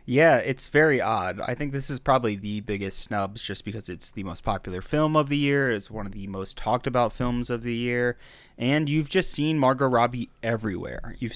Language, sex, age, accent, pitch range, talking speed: English, male, 20-39, American, 110-135 Hz, 215 wpm